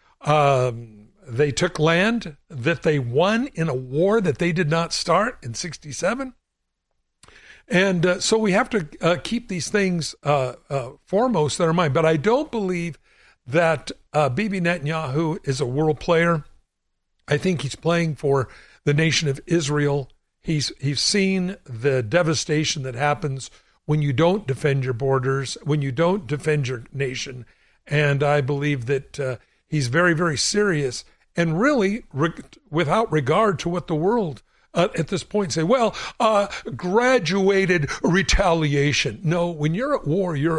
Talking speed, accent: 155 wpm, American